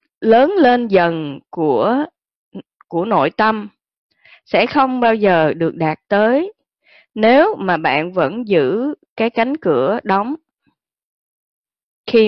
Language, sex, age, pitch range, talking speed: Vietnamese, female, 20-39, 165-250 Hz, 115 wpm